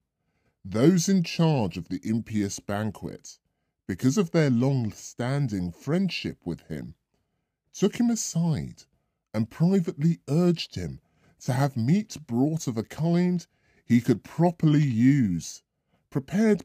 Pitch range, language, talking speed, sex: 105-155 Hz, English, 120 wpm, female